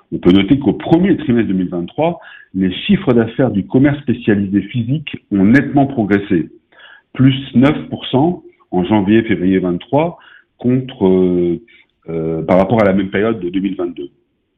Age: 50-69